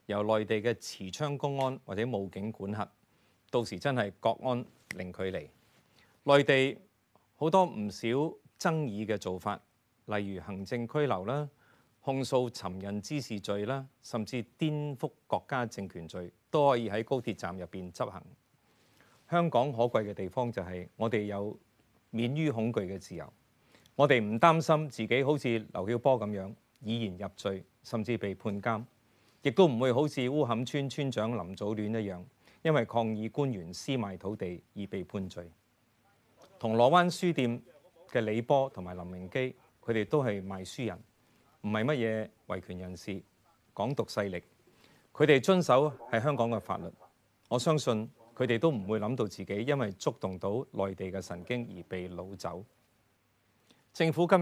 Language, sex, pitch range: Chinese, male, 100-130 Hz